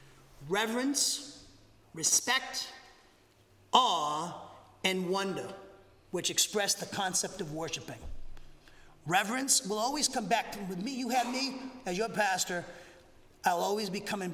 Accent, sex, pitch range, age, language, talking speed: American, male, 165-225 Hz, 40-59, English, 115 wpm